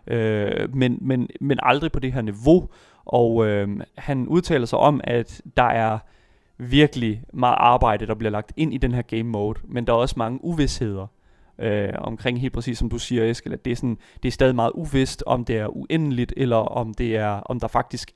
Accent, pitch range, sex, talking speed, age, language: native, 110-145 Hz, male, 210 wpm, 30-49, Danish